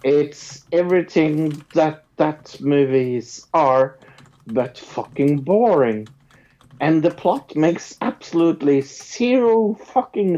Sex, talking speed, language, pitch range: male, 95 wpm, English, 135-190 Hz